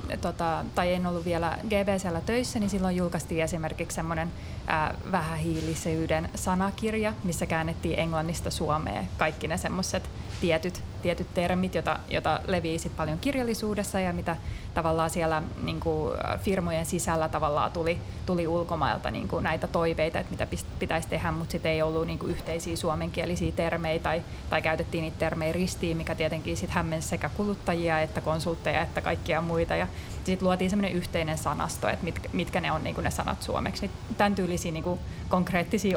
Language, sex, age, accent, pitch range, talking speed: Finnish, female, 30-49, native, 160-180 Hz, 150 wpm